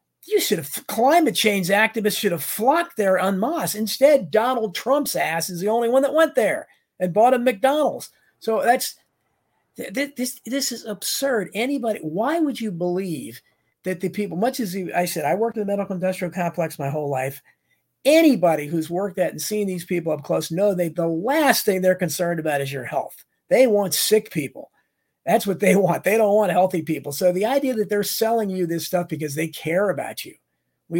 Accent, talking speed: American, 200 wpm